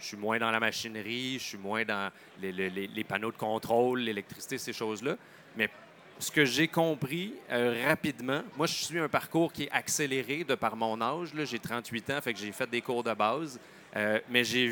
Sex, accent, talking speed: male, Canadian, 215 wpm